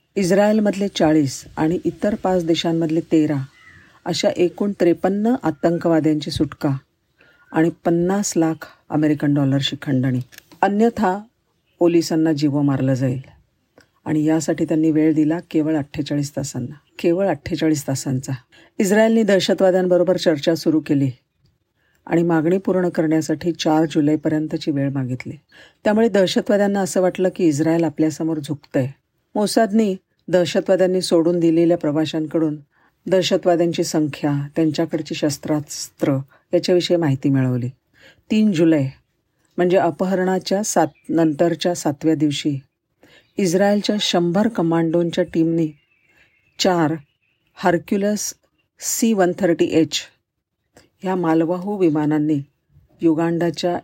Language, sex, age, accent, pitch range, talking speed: Marathi, female, 50-69, native, 150-185 Hz, 95 wpm